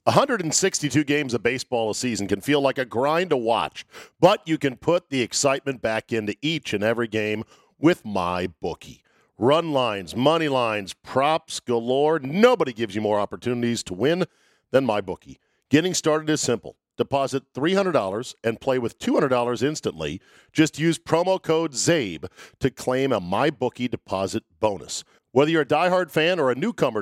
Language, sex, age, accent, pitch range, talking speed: English, male, 50-69, American, 110-155 Hz, 180 wpm